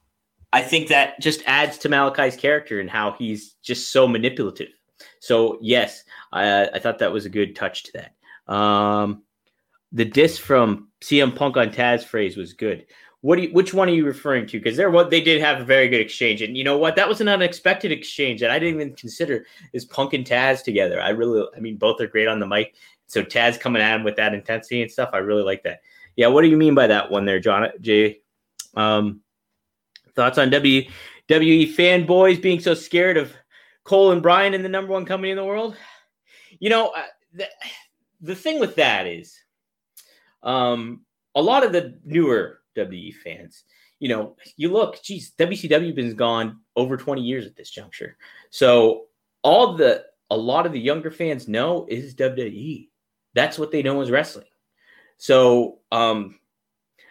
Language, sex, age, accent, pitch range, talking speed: English, male, 30-49, American, 110-170 Hz, 190 wpm